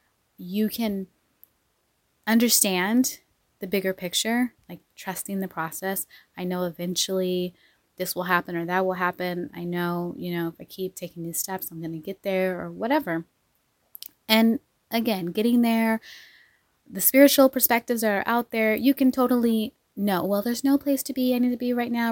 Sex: female